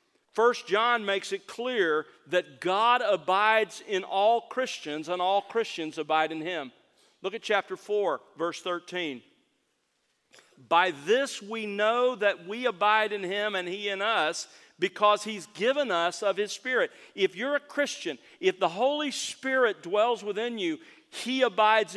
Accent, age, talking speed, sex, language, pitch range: American, 50-69, 155 wpm, male, English, 160-225 Hz